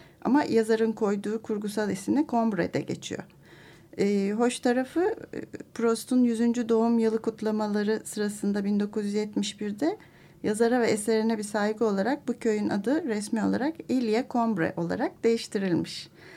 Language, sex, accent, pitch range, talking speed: Turkish, female, native, 200-240 Hz, 115 wpm